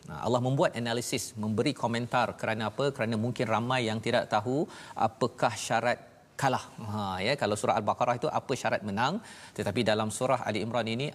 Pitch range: 115-140 Hz